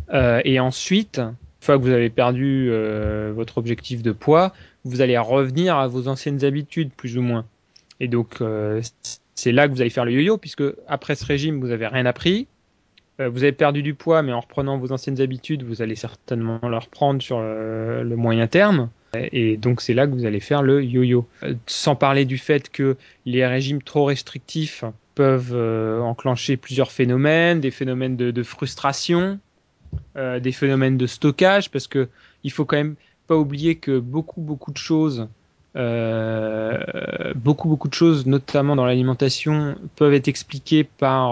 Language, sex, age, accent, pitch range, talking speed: French, male, 20-39, French, 120-145 Hz, 180 wpm